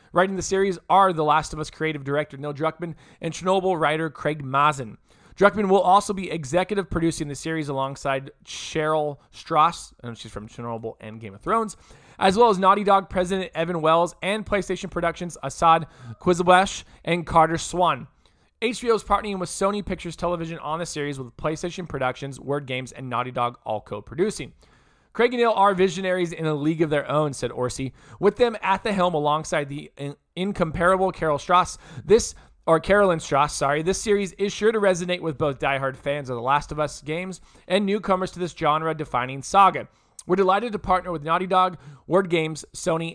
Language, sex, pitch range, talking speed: English, male, 145-185 Hz, 185 wpm